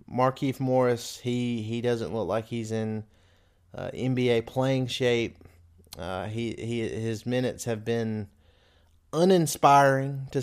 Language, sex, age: English, male, 30-49